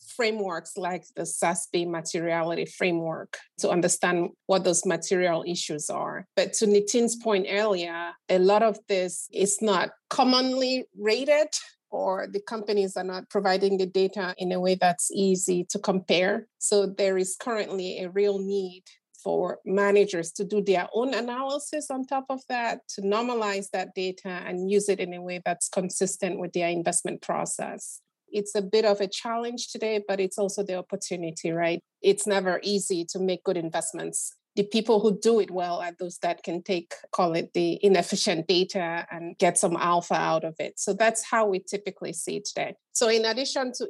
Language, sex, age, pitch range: English, female, 30-49, 180-215 Hz